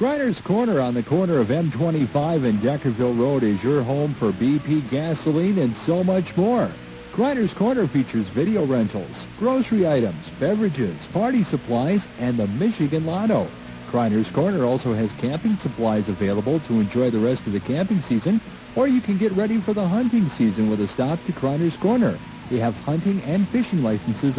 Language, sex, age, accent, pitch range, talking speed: English, male, 50-69, American, 120-200 Hz, 170 wpm